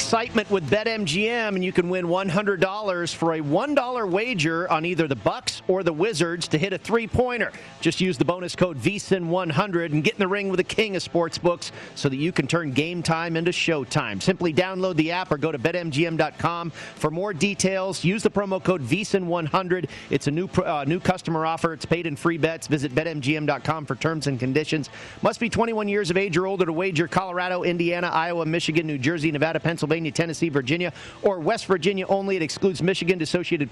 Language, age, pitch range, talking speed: English, 40-59, 155-185 Hz, 195 wpm